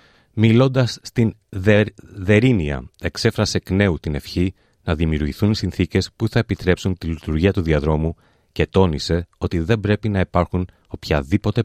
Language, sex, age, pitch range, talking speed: Greek, male, 30-49, 80-105 Hz, 140 wpm